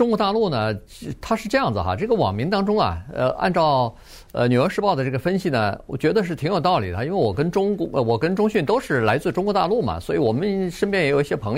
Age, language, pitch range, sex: 50-69, Chinese, 105-165 Hz, male